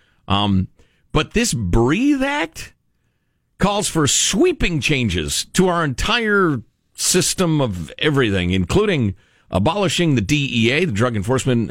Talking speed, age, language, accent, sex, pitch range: 115 wpm, 50-69, English, American, male, 105-165 Hz